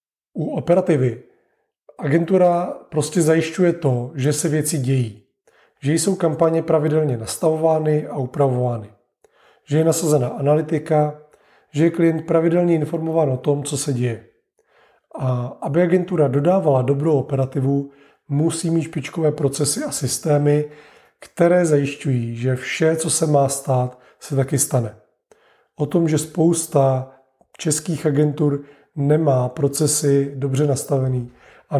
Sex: male